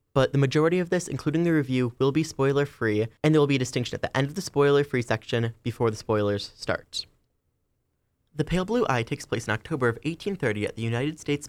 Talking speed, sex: 220 wpm, male